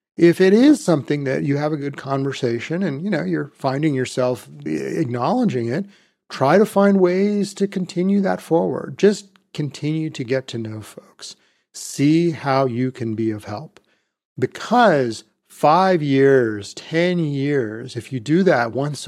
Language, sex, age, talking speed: English, male, 40-59, 155 wpm